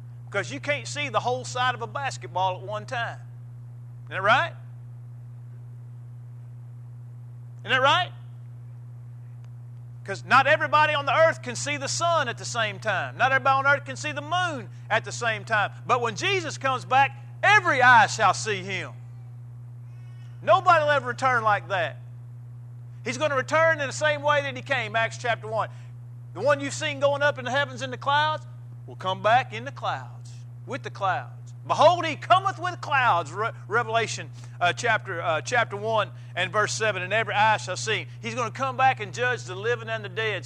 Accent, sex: American, male